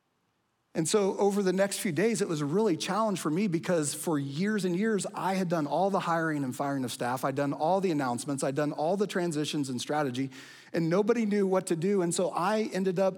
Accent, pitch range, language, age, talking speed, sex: American, 145-190 Hz, English, 40-59, 235 wpm, male